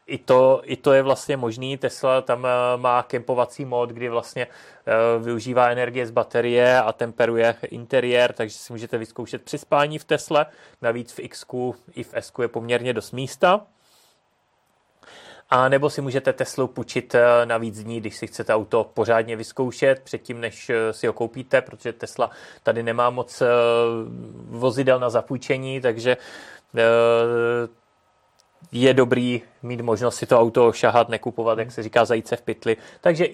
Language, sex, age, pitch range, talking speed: Czech, male, 20-39, 120-145 Hz, 155 wpm